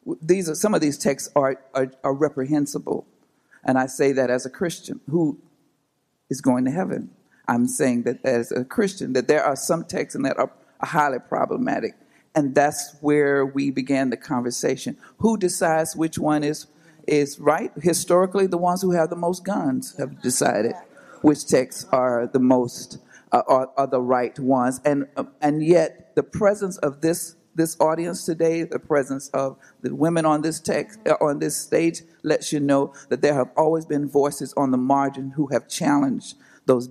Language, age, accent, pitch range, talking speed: English, 50-69, American, 135-165 Hz, 180 wpm